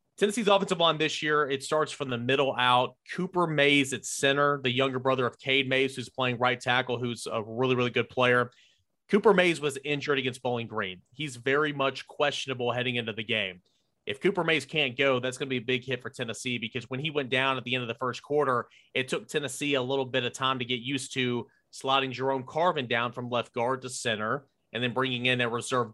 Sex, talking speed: male, 230 wpm